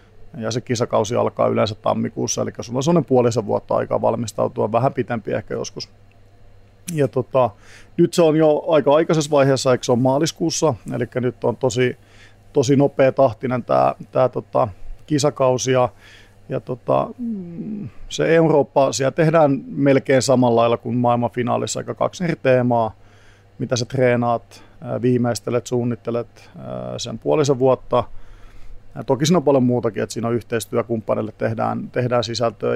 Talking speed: 140 wpm